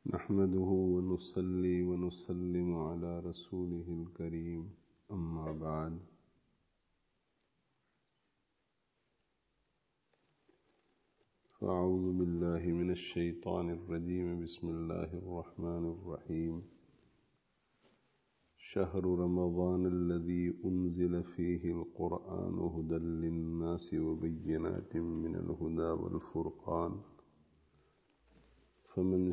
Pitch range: 85-90 Hz